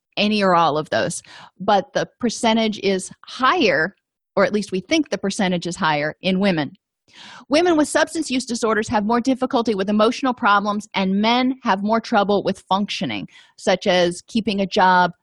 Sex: female